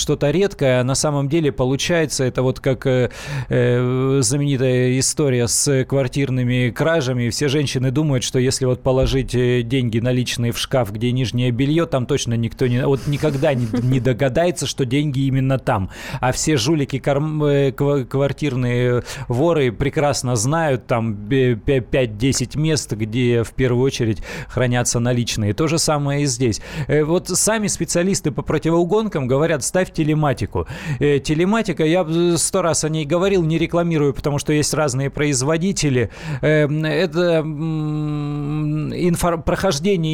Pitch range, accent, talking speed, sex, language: 130-160 Hz, native, 135 wpm, male, Russian